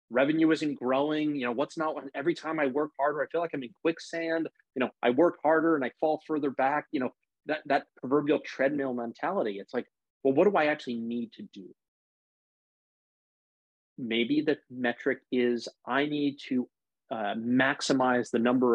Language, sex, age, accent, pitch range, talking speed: English, male, 30-49, American, 115-150 Hz, 180 wpm